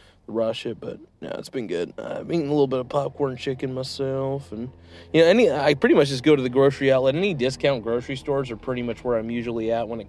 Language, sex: English, male